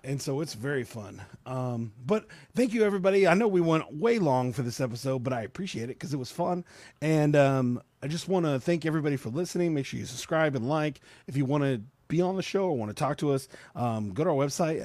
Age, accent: 30-49, American